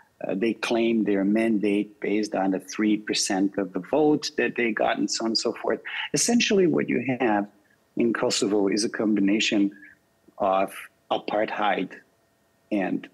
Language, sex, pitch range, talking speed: English, male, 100-120 Hz, 150 wpm